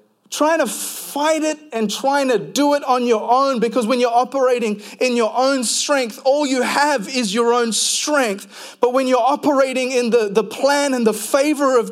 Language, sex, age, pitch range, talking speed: English, male, 30-49, 220-275 Hz, 195 wpm